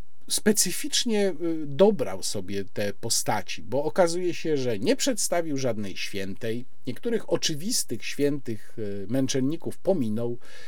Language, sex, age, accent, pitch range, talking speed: Polish, male, 50-69, native, 115-165 Hz, 100 wpm